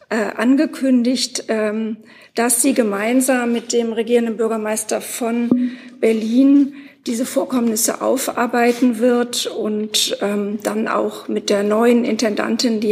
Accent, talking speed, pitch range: German, 100 wpm, 210-245 Hz